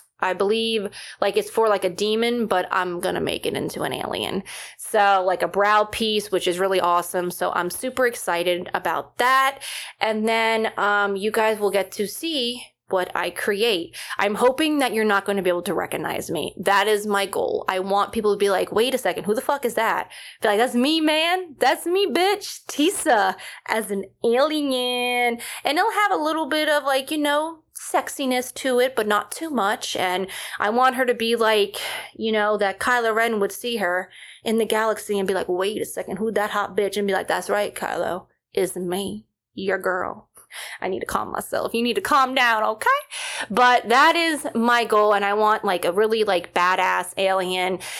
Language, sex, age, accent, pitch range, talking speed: English, female, 20-39, American, 195-250 Hz, 210 wpm